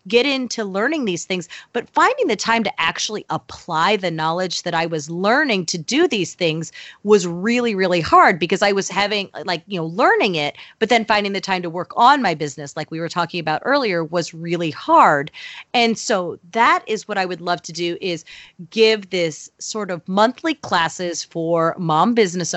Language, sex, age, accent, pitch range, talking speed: English, female, 30-49, American, 175-225 Hz, 195 wpm